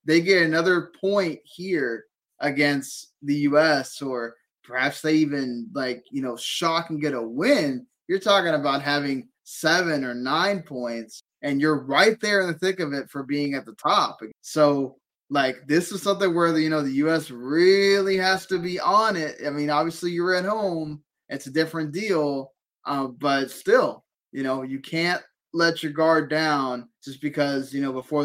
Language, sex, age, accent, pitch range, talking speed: English, male, 20-39, American, 135-175 Hz, 185 wpm